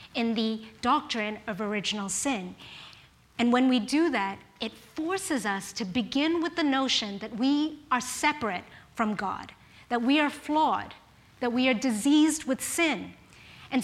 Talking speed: 155 wpm